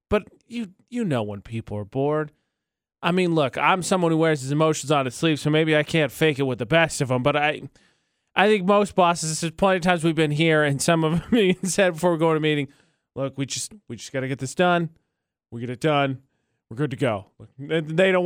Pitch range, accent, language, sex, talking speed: 145-205 Hz, American, English, male, 250 wpm